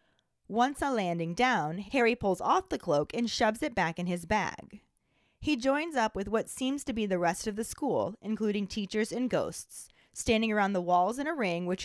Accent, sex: American, female